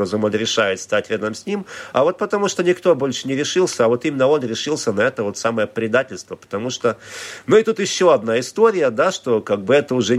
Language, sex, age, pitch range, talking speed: Russian, male, 50-69, 115-150 Hz, 225 wpm